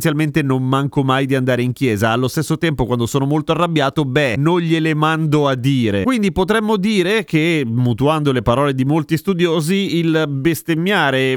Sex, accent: male, native